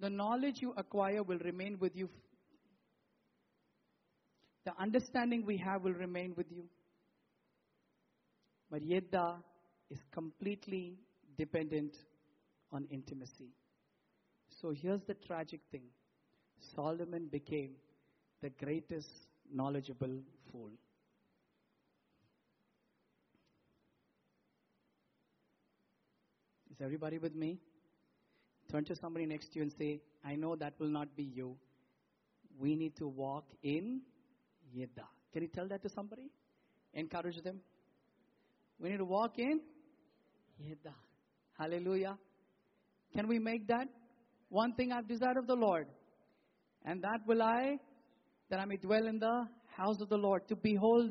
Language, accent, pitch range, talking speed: English, Indian, 150-215 Hz, 120 wpm